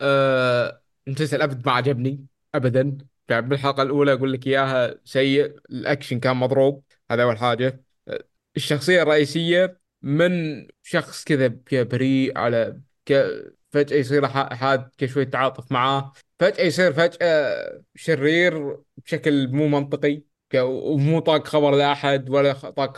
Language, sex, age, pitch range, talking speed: Arabic, male, 20-39, 130-155 Hz, 125 wpm